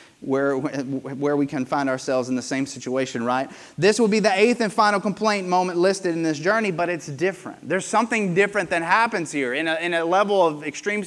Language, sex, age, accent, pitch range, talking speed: English, male, 30-49, American, 155-205 Hz, 215 wpm